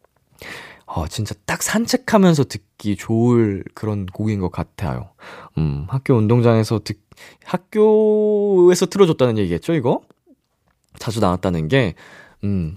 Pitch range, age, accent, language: 100-155 Hz, 20-39, native, Korean